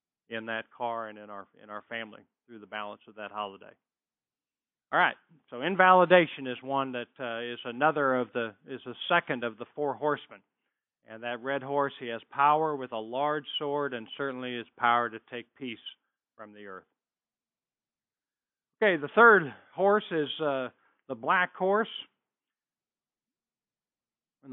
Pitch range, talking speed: 125-175 Hz, 160 wpm